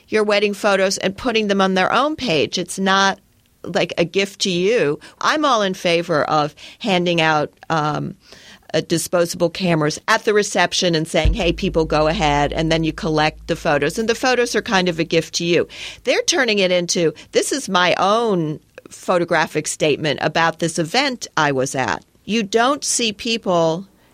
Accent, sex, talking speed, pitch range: American, female, 180 wpm, 160-195 Hz